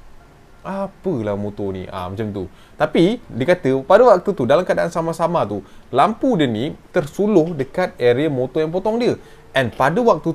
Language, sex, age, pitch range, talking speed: Malay, male, 20-39, 115-195 Hz, 170 wpm